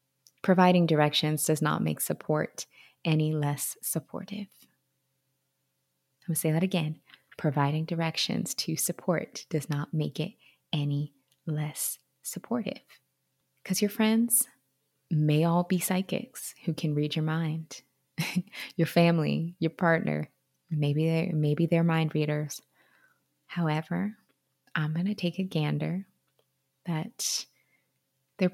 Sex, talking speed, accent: female, 120 wpm, American